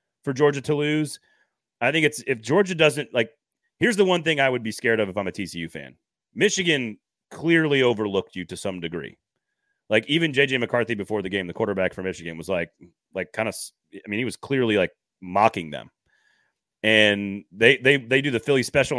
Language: English